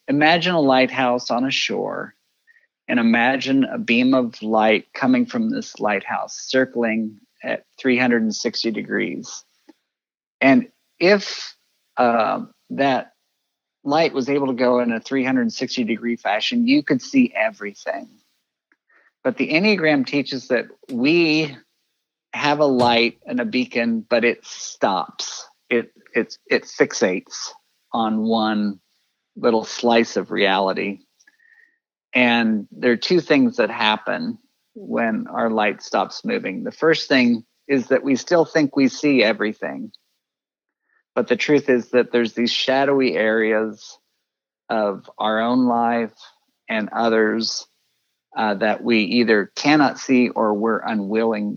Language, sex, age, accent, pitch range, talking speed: English, male, 50-69, American, 115-170 Hz, 125 wpm